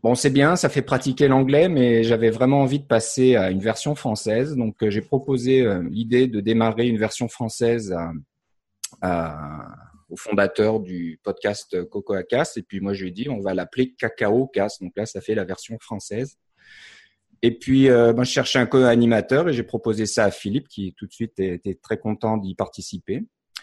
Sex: male